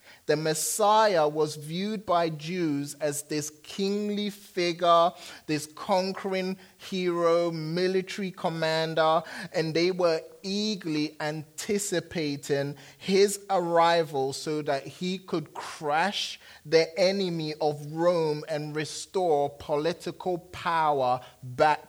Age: 30-49